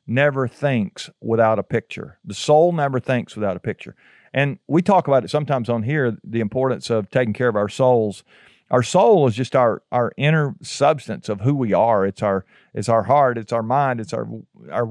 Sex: male